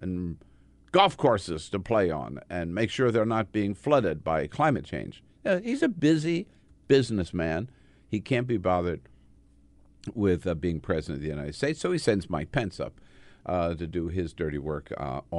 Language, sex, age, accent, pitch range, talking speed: English, male, 50-69, American, 85-115 Hz, 185 wpm